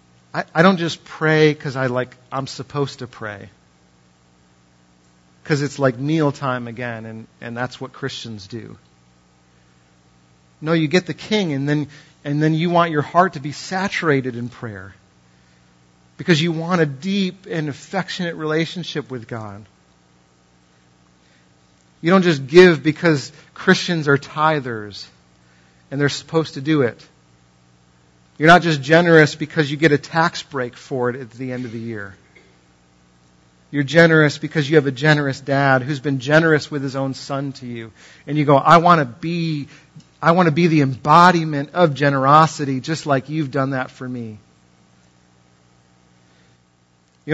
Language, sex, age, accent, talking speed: English, male, 40-59, American, 150 wpm